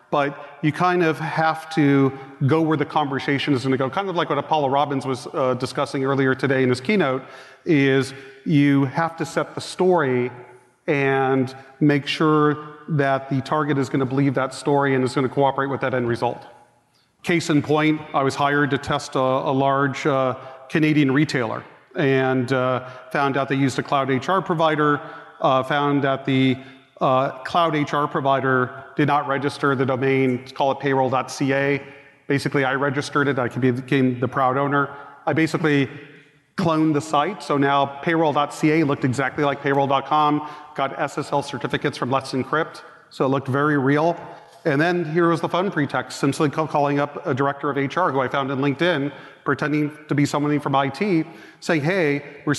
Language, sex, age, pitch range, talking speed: English, male, 40-59, 135-150 Hz, 175 wpm